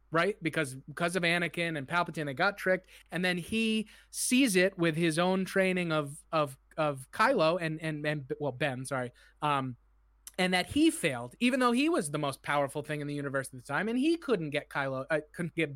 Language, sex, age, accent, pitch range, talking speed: English, male, 30-49, American, 145-185 Hz, 215 wpm